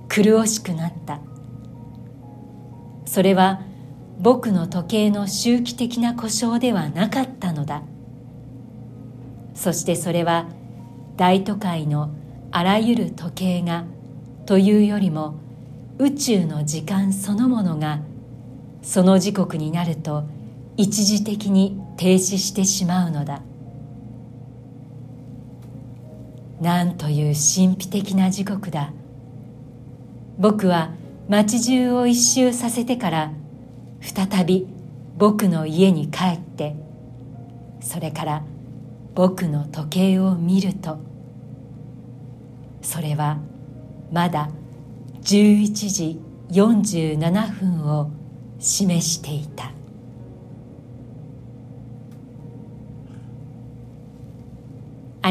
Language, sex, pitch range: Japanese, female, 125-190 Hz